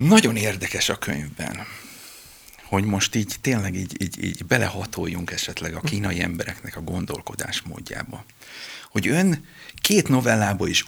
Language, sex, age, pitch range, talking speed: Hungarian, male, 50-69, 100-125 Hz, 125 wpm